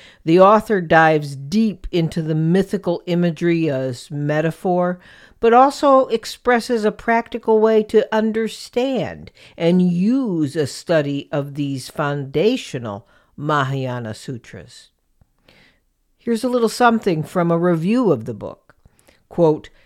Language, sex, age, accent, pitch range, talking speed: English, female, 60-79, American, 145-220 Hz, 115 wpm